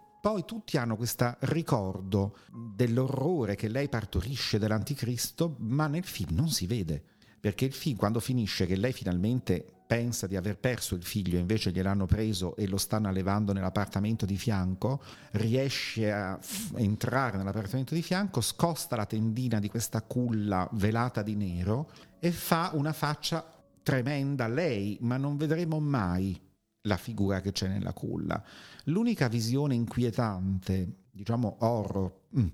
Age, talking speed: 50-69, 145 wpm